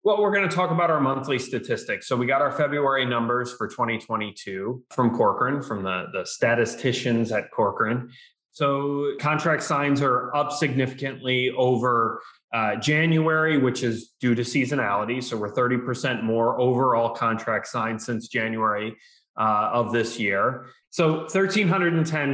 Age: 20-39